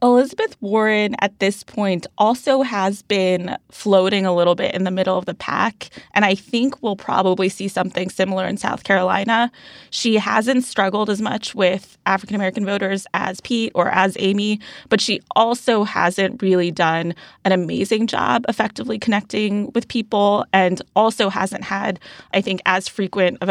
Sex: female